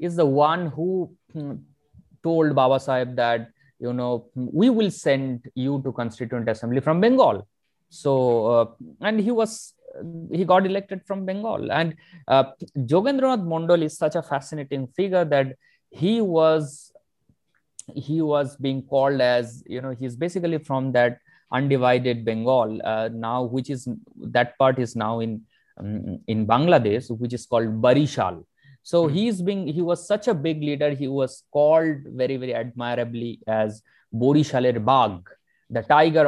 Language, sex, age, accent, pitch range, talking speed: Hindi, male, 20-39, native, 120-165 Hz, 150 wpm